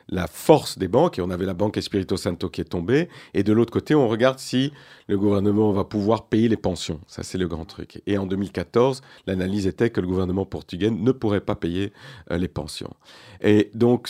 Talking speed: 215 wpm